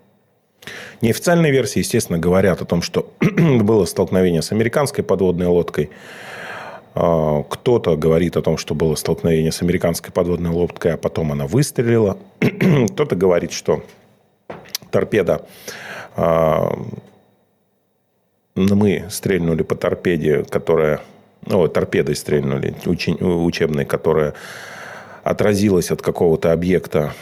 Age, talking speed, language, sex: 30-49, 100 wpm, Russian, male